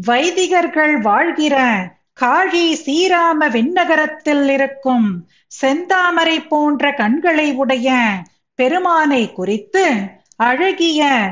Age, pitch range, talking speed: 50-69, 245-335 Hz, 70 wpm